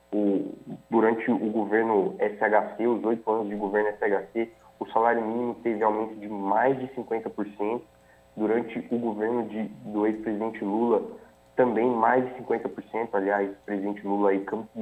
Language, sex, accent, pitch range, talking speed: Portuguese, male, Brazilian, 105-125 Hz, 150 wpm